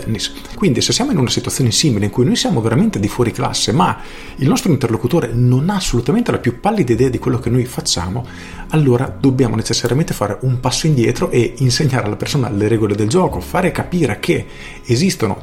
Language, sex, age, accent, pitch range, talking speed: Italian, male, 40-59, native, 110-135 Hz, 200 wpm